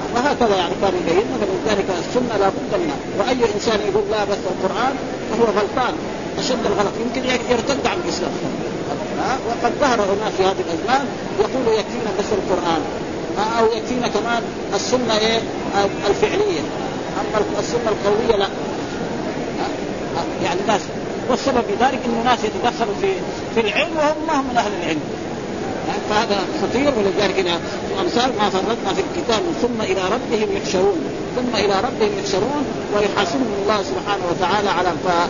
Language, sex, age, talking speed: Arabic, male, 50-69, 140 wpm